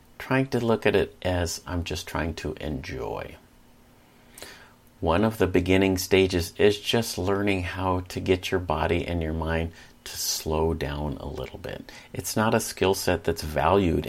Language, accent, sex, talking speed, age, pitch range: English, American, male, 170 wpm, 40-59, 75-95 Hz